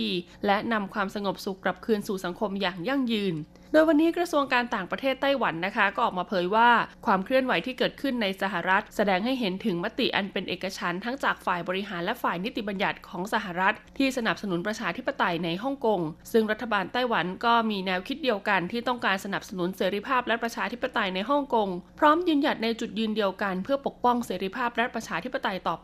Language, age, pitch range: Thai, 20-39, 190-250 Hz